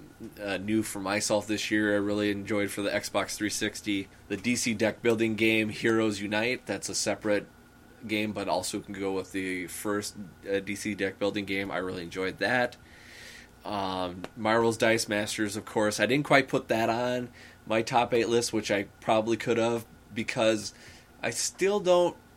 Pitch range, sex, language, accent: 95-115 Hz, male, English, American